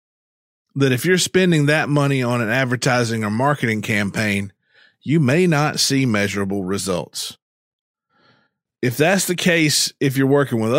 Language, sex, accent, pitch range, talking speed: English, male, American, 110-145 Hz, 145 wpm